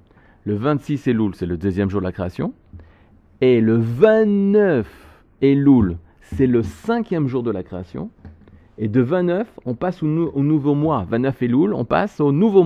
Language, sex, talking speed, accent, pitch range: French, male, 190 wpm, French, 95-155 Hz